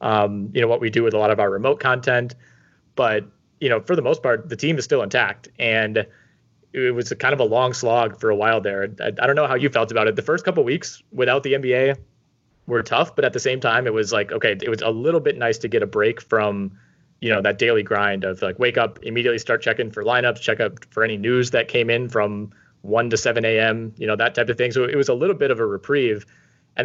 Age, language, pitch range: 20-39, English, 105-120 Hz